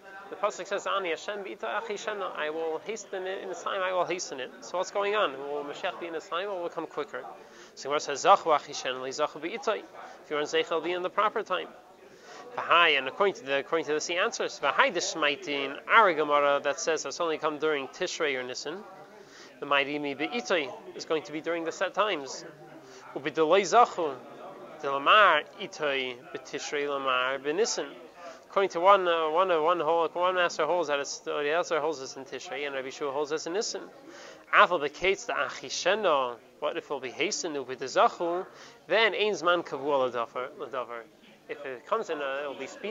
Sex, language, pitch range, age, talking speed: male, English, 145-195 Hz, 30-49, 175 wpm